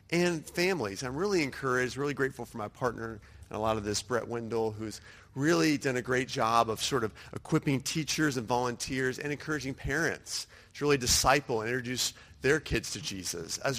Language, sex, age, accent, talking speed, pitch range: English, male, 40-59, American, 185 wpm, 115-155 Hz